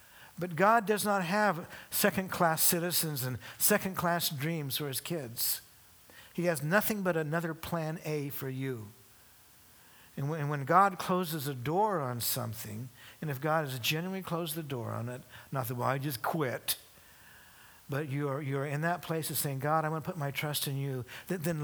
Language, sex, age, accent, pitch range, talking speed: English, male, 60-79, American, 135-175 Hz, 175 wpm